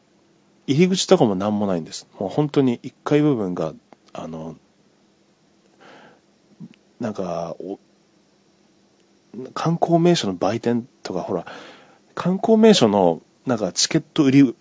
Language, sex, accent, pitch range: Japanese, male, native, 95-140 Hz